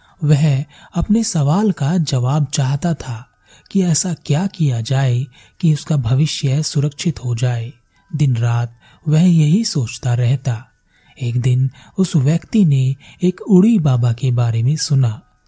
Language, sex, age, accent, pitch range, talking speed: Hindi, male, 30-49, native, 130-175 Hz, 145 wpm